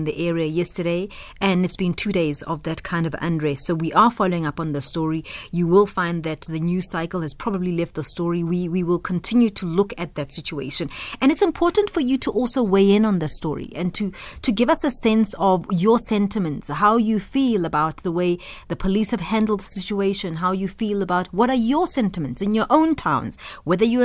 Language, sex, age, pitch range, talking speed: English, female, 30-49, 175-225 Hz, 225 wpm